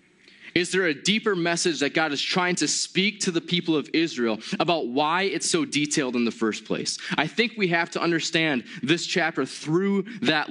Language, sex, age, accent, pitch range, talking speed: English, male, 20-39, American, 150-195 Hz, 200 wpm